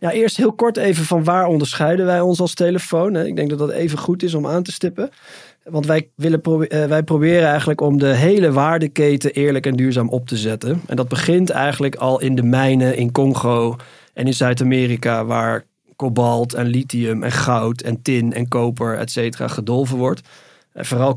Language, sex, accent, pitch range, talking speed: Dutch, male, Dutch, 120-150 Hz, 195 wpm